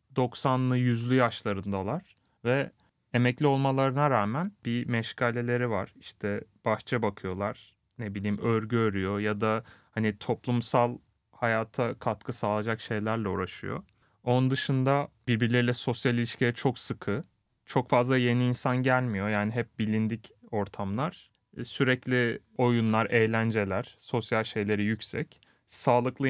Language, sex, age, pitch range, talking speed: Turkish, male, 30-49, 110-125 Hz, 110 wpm